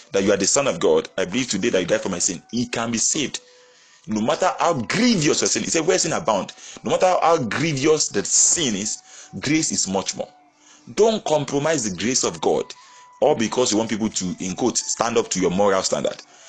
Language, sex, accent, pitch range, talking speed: English, male, Nigerian, 110-185 Hz, 225 wpm